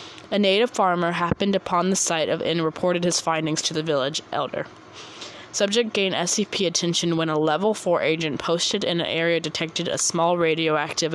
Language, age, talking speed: English, 20-39, 180 wpm